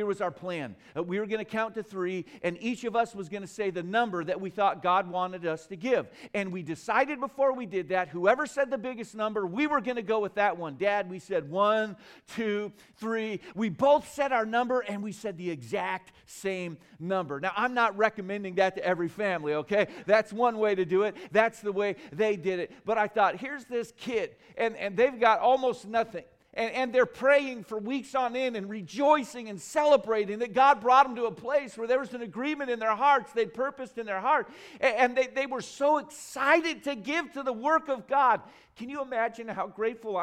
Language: English